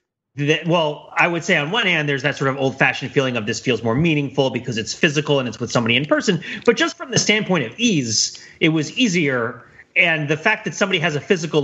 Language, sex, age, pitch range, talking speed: English, male, 30-49, 125-165 Hz, 235 wpm